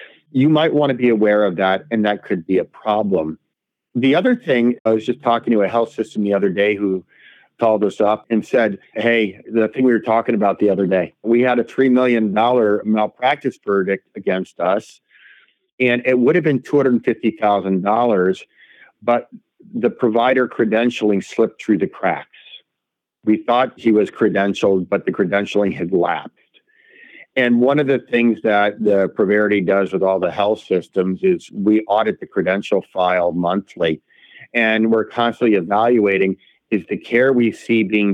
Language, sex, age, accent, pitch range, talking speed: English, male, 50-69, American, 100-120 Hz, 170 wpm